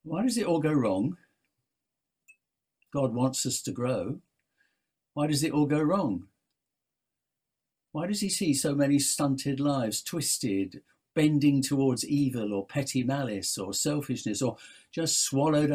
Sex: male